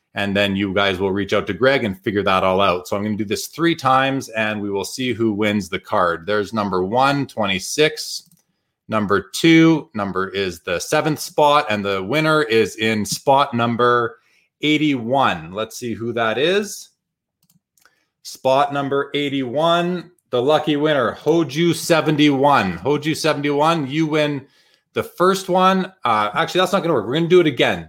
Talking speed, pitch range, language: 170 wpm, 115-160 Hz, English